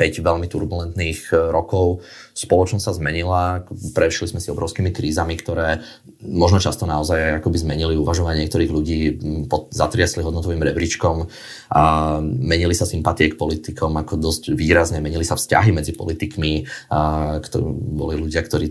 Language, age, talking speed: Slovak, 30-49, 135 wpm